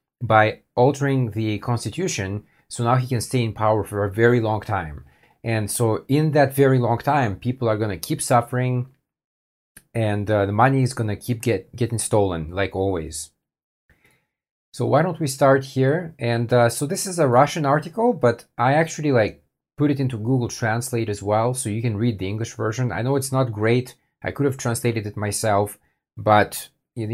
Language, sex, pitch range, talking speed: English, male, 105-130 Hz, 190 wpm